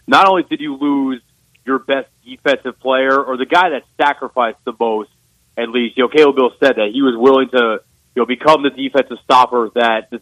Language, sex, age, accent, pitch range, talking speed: English, male, 30-49, American, 125-140 Hz, 210 wpm